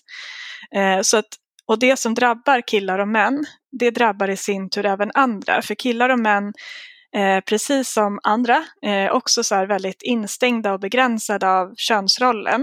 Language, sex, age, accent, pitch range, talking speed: Swedish, female, 20-39, native, 200-245 Hz, 160 wpm